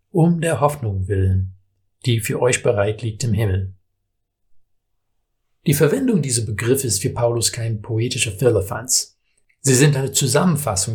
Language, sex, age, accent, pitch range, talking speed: German, male, 60-79, German, 100-130 Hz, 135 wpm